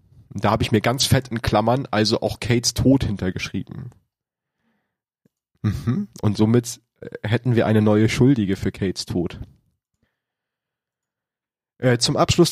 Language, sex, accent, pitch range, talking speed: German, male, German, 100-120 Hz, 130 wpm